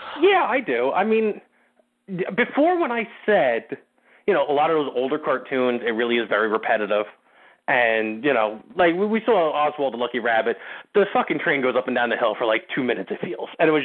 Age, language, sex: 30-49, English, male